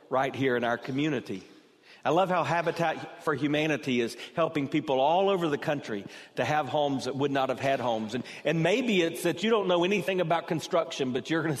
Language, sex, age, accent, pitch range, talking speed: English, male, 50-69, American, 135-170 Hz, 215 wpm